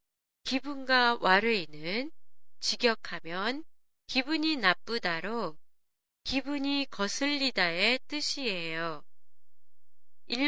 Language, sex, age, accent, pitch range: Japanese, female, 20-39, Korean, 185-260 Hz